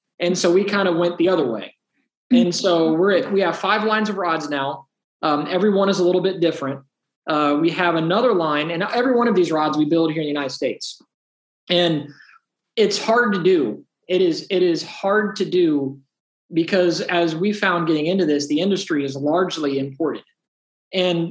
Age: 20-39